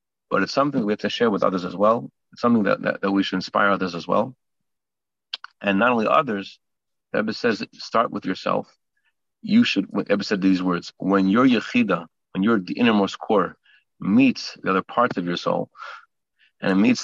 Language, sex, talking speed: English, male, 200 wpm